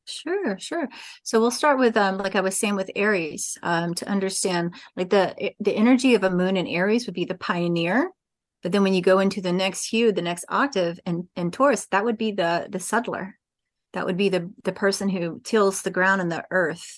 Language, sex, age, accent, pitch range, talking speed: English, female, 30-49, American, 175-210 Hz, 225 wpm